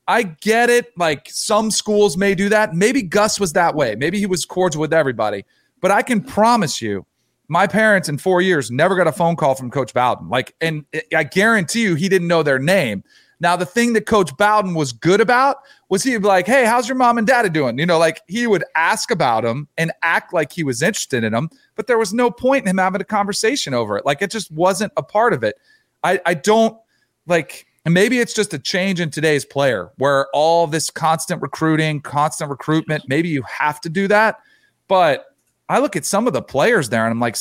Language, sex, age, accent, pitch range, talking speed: English, male, 40-59, American, 150-210 Hz, 225 wpm